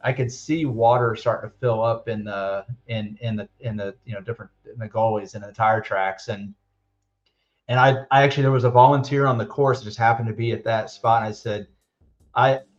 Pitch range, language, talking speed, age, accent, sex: 110-130 Hz, English, 230 wpm, 30-49, American, male